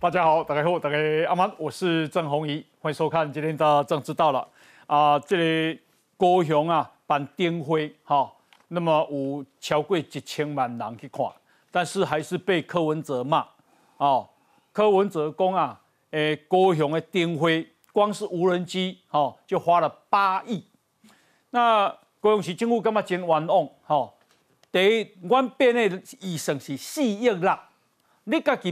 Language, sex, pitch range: Chinese, male, 160-220 Hz